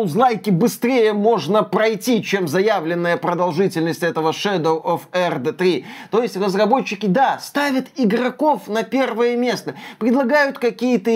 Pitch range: 190-250 Hz